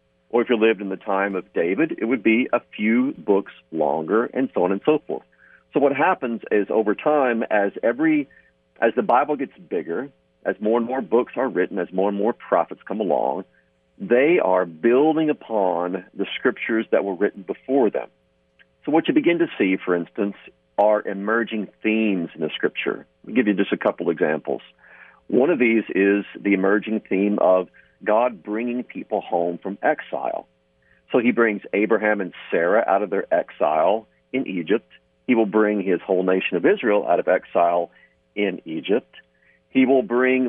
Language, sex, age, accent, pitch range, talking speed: English, male, 50-69, American, 90-120 Hz, 180 wpm